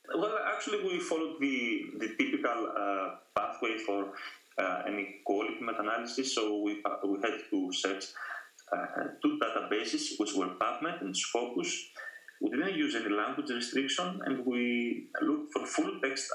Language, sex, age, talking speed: English, male, 30-49, 145 wpm